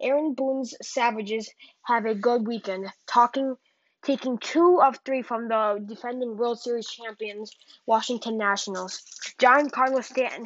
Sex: female